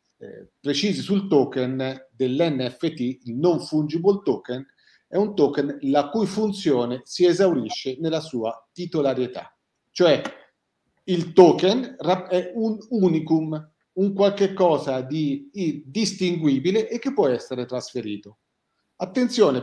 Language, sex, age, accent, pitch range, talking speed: Italian, male, 40-59, native, 130-200 Hz, 115 wpm